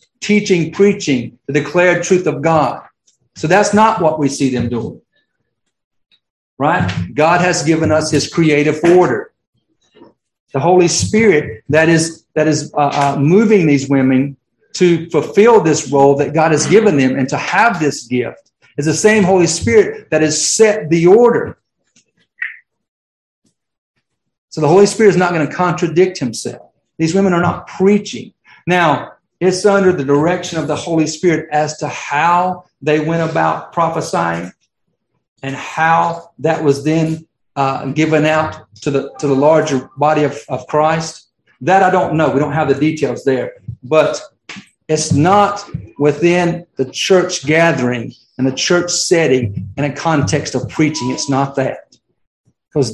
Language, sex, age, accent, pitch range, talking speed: English, male, 50-69, American, 140-175 Hz, 155 wpm